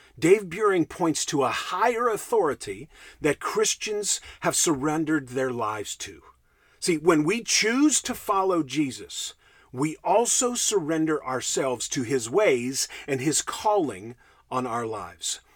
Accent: American